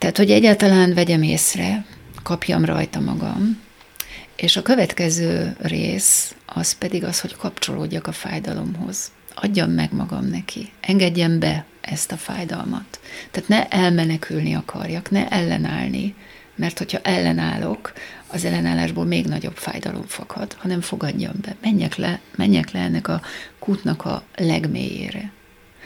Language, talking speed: Hungarian, 130 wpm